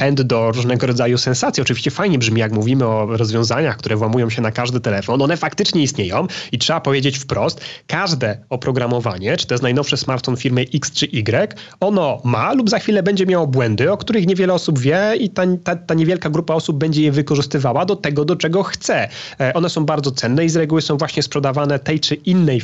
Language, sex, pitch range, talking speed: Polish, male, 130-165 Hz, 200 wpm